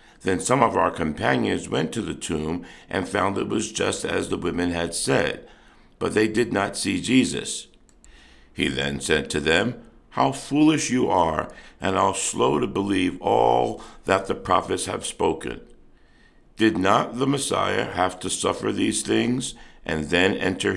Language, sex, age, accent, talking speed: English, male, 60-79, American, 165 wpm